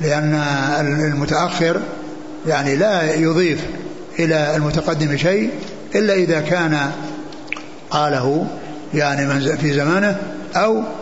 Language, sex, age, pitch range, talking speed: Arabic, male, 60-79, 150-175 Hz, 85 wpm